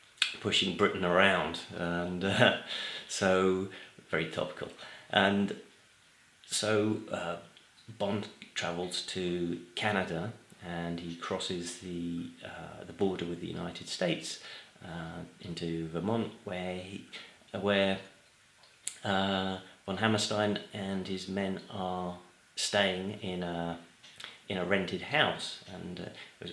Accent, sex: British, male